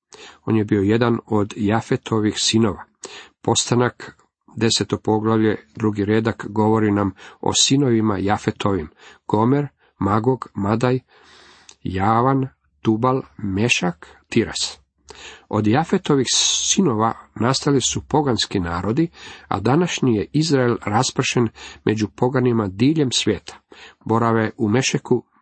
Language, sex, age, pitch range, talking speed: Croatian, male, 40-59, 100-125 Hz, 100 wpm